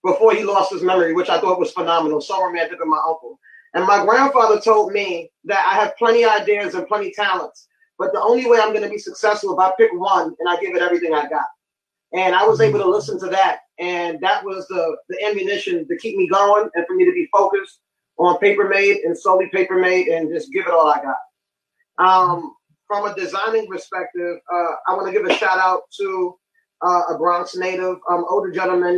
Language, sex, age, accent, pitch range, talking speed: English, male, 20-39, American, 180-215 Hz, 230 wpm